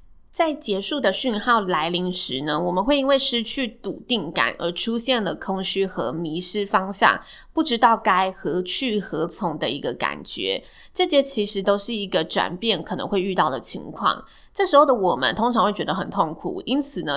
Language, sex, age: Chinese, female, 20-39